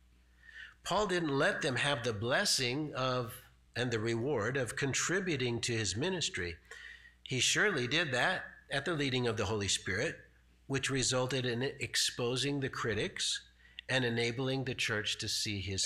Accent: American